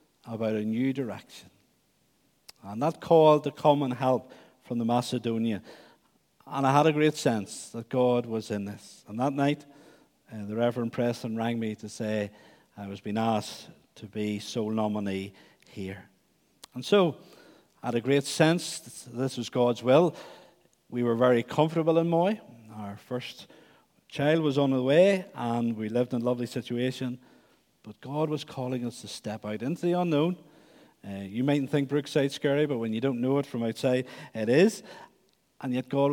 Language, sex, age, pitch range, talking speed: English, male, 50-69, 115-145 Hz, 180 wpm